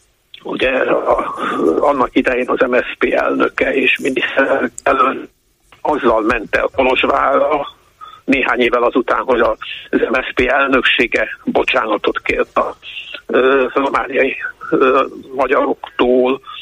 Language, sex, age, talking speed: Hungarian, male, 60-79, 115 wpm